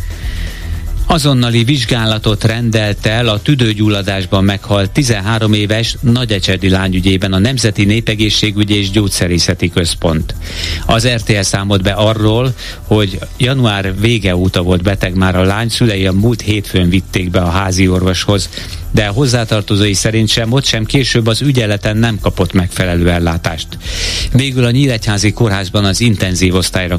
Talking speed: 135 wpm